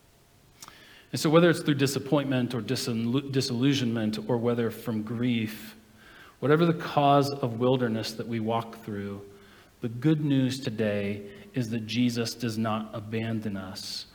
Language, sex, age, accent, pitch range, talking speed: English, male, 40-59, American, 105-155 Hz, 135 wpm